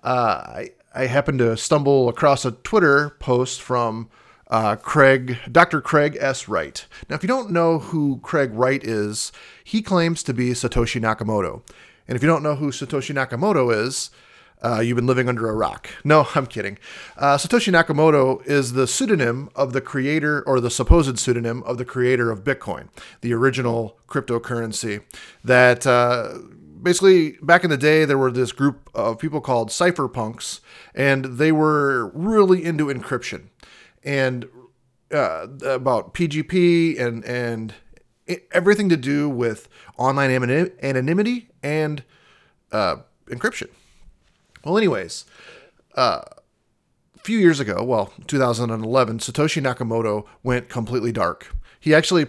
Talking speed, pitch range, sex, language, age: 140 wpm, 120-155 Hz, male, English, 30-49